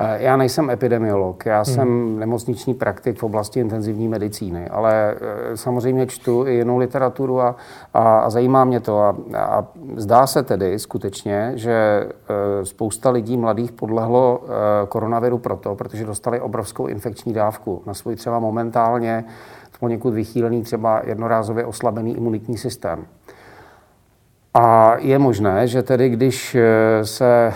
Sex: male